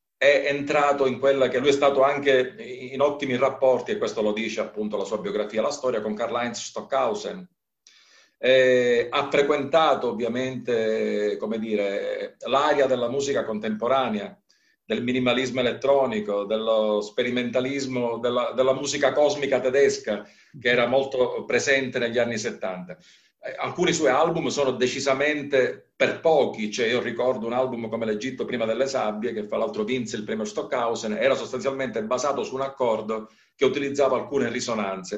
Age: 50-69